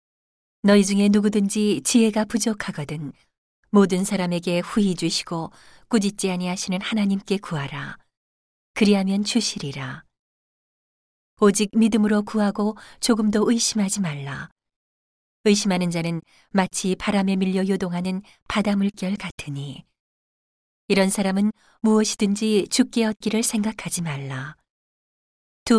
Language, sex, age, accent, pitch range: Korean, female, 40-59, native, 165-210 Hz